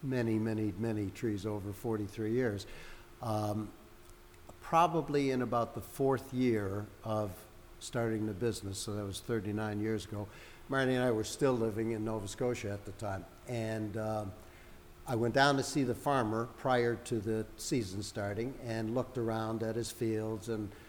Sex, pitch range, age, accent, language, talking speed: male, 105-125 Hz, 60-79, American, English, 165 wpm